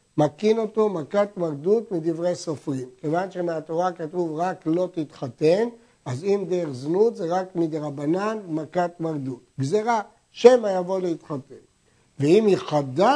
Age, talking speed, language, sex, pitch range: 60-79, 125 wpm, Hebrew, male, 155-205 Hz